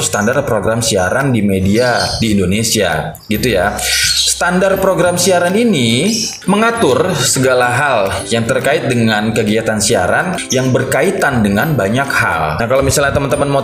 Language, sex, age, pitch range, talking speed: Indonesian, male, 20-39, 105-140 Hz, 135 wpm